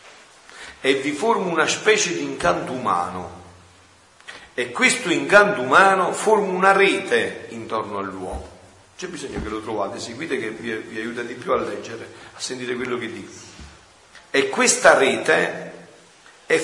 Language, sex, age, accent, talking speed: Italian, male, 50-69, native, 145 wpm